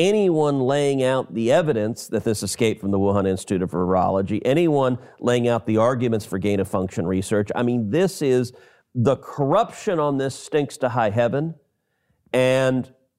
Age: 40-59